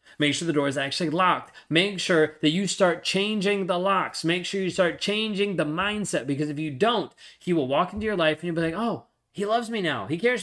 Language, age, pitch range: English, 30-49, 135-175 Hz